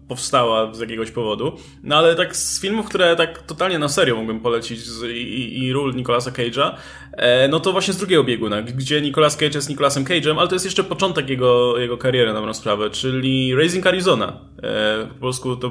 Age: 20-39